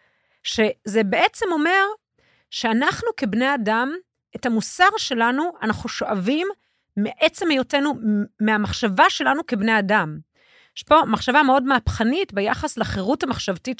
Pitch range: 200-275 Hz